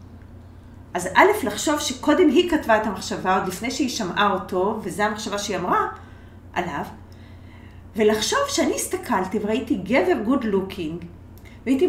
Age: 40-59